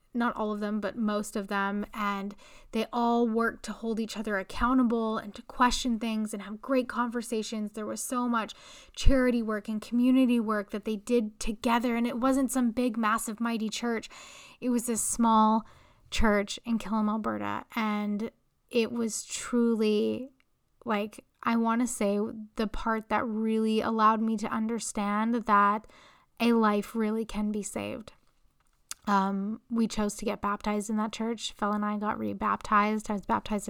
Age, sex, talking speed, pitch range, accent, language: 10-29, female, 170 wpm, 210-230 Hz, American, English